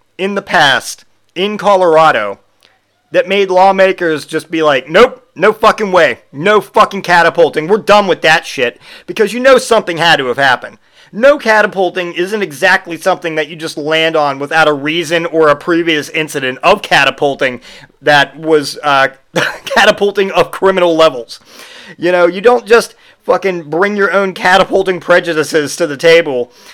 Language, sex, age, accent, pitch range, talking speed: English, male, 40-59, American, 150-200 Hz, 160 wpm